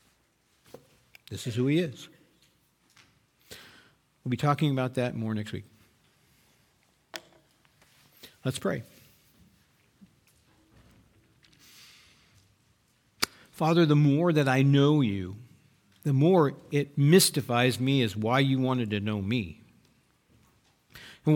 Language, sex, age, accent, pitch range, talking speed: English, male, 50-69, American, 120-165 Hz, 100 wpm